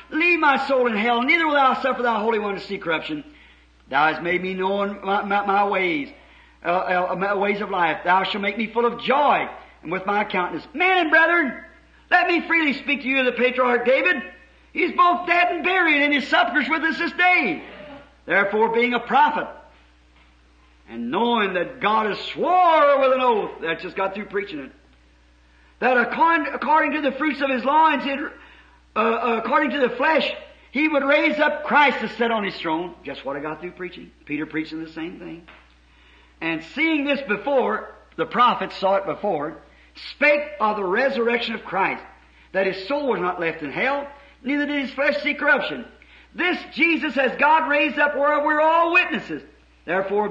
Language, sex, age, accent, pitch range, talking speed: English, male, 50-69, American, 195-295 Hz, 195 wpm